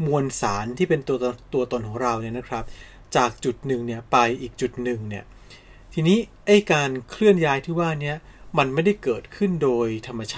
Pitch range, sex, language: 120-160 Hz, male, Thai